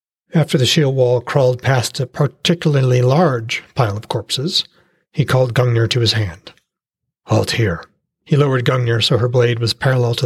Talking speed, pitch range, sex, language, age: 170 wpm, 115-140 Hz, male, English, 40-59